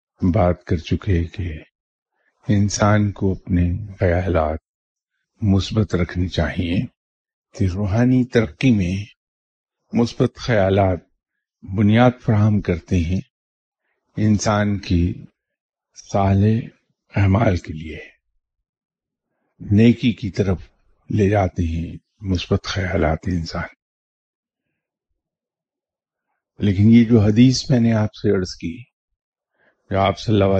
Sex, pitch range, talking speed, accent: male, 85-110 Hz, 95 wpm, Indian